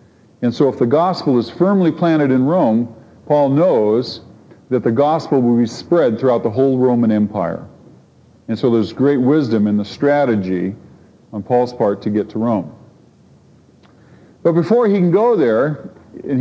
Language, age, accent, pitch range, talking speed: English, 50-69, American, 115-165 Hz, 165 wpm